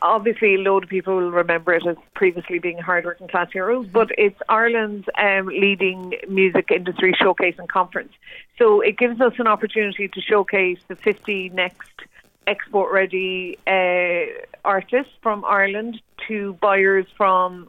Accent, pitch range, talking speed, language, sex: Irish, 185-220 Hz, 155 wpm, English, female